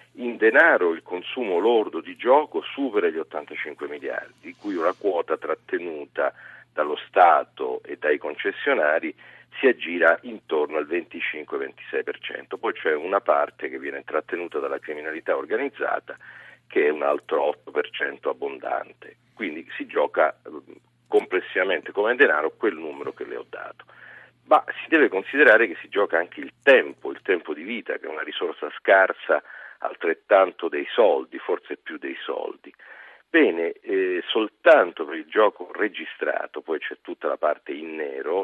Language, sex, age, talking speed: Italian, male, 40-59, 145 wpm